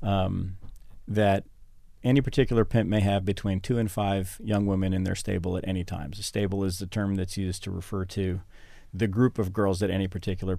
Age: 40-59